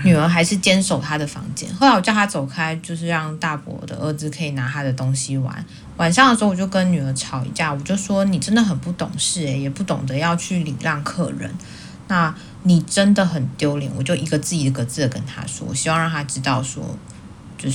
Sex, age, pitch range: female, 20-39, 135-175 Hz